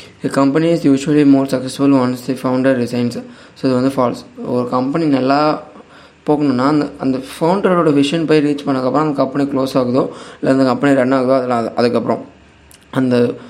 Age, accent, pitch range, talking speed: 20-39, native, 125-150 Hz, 165 wpm